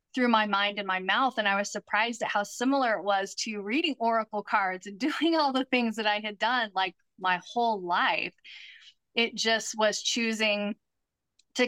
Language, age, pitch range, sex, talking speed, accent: English, 30-49, 205-235 Hz, female, 190 wpm, American